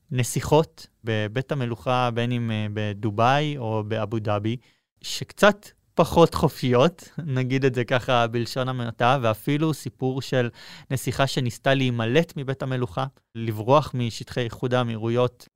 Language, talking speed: Hebrew, 115 wpm